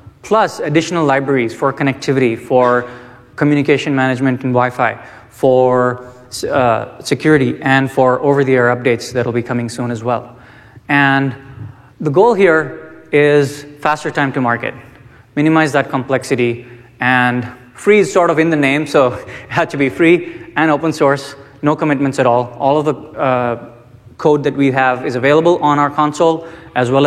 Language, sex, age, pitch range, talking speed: English, male, 20-39, 125-150 Hz, 155 wpm